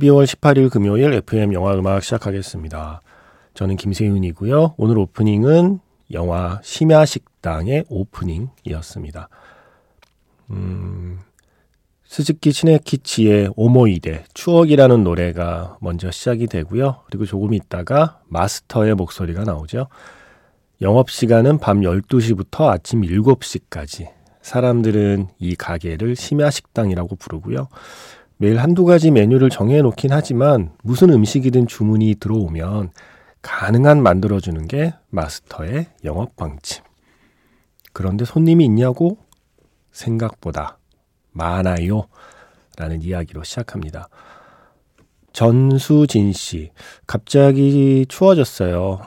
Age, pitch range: 40-59, 90-135 Hz